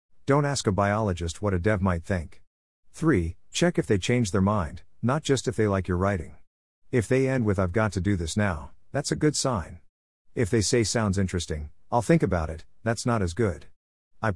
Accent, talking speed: American, 215 wpm